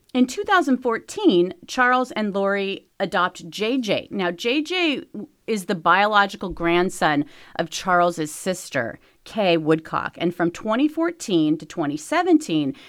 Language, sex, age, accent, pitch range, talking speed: English, female, 30-49, American, 175-245 Hz, 105 wpm